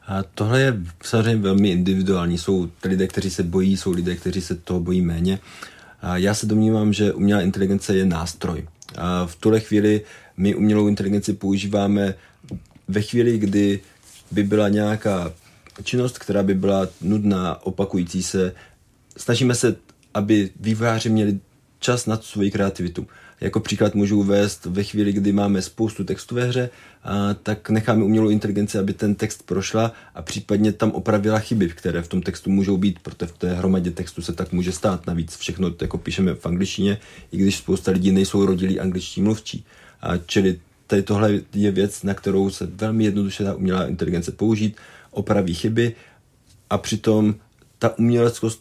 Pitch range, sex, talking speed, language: 95-105 Hz, male, 165 wpm, Czech